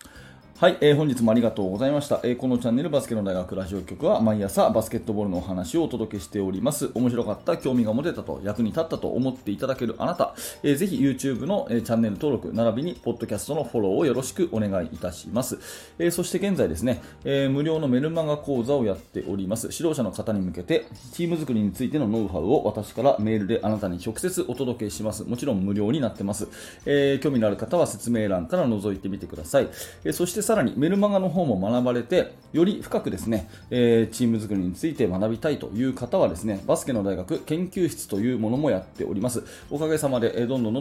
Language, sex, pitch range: Japanese, male, 100-135 Hz